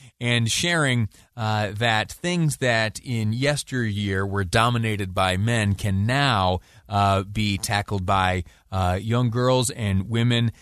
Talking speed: 130 wpm